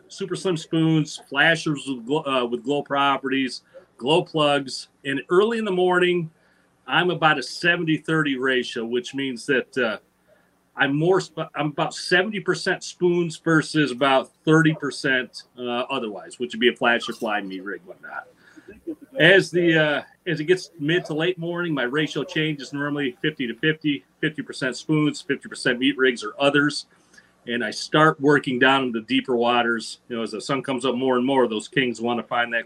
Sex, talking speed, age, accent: male, 175 wpm, 40-59, American